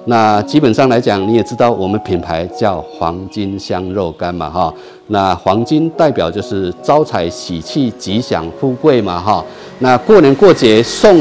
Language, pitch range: Chinese, 100-145 Hz